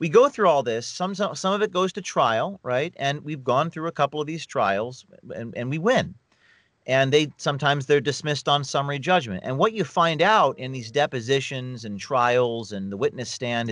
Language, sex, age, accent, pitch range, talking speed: English, male, 40-59, American, 125-190 Hz, 215 wpm